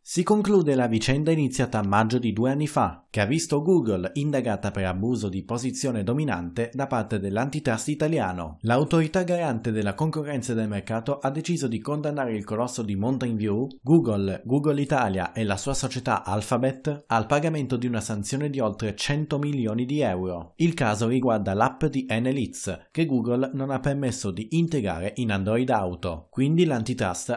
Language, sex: Italian, male